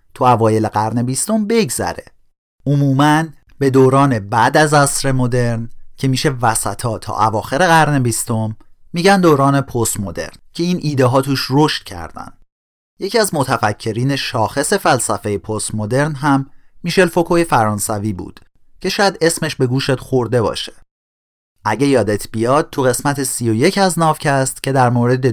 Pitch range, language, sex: 110-155 Hz, Persian, male